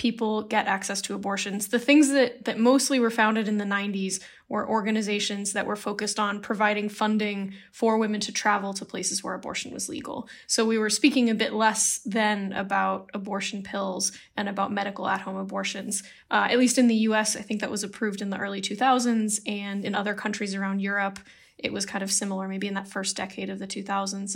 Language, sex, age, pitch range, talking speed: English, female, 10-29, 200-225 Hz, 205 wpm